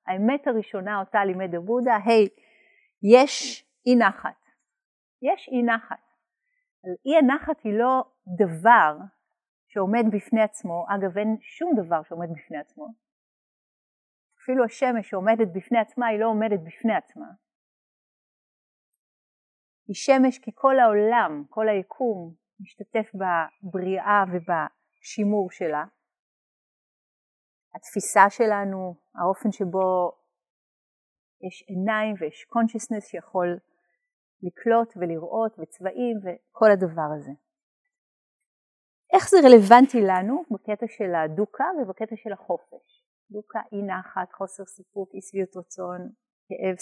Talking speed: 105 wpm